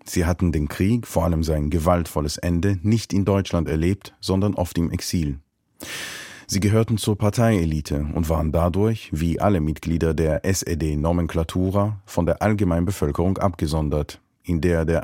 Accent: German